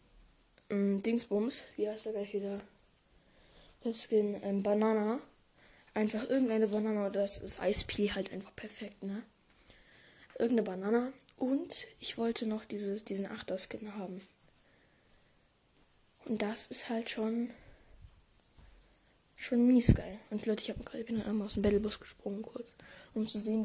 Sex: female